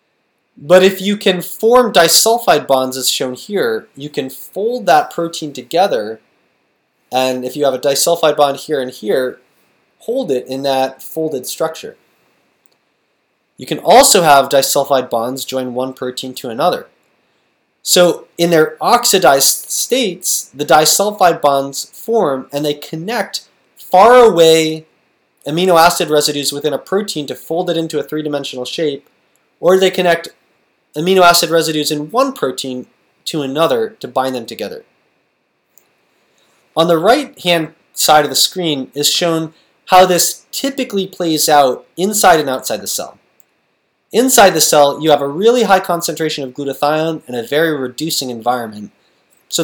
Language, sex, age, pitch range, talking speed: English, male, 20-39, 140-180 Hz, 145 wpm